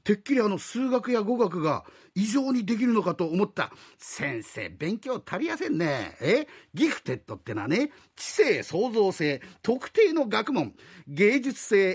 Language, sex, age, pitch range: Japanese, male, 50-69, 170-270 Hz